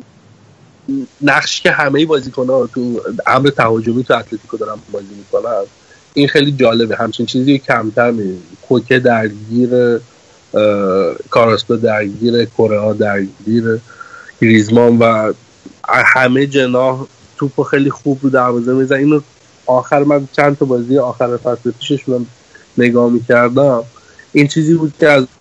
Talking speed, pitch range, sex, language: 125 wpm, 115-135 Hz, male, Persian